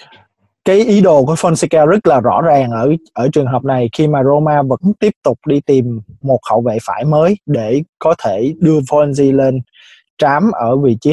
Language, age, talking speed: Vietnamese, 20-39, 200 wpm